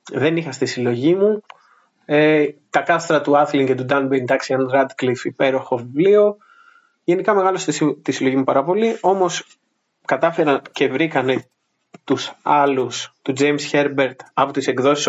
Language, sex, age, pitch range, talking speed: Greek, male, 20-39, 130-155 Hz, 145 wpm